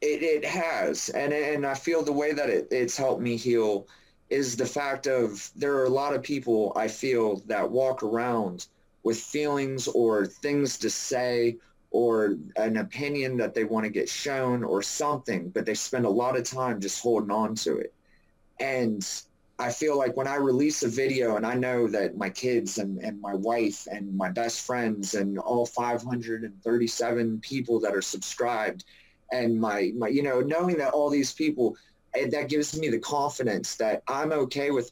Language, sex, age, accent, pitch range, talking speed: English, male, 30-49, American, 115-140 Hz, 185 wpm